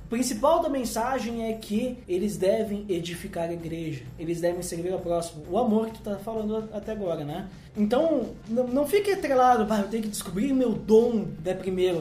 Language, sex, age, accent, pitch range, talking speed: Portuguese, male, 20-39, Brazilian, 175-230 Hz, 190 wpm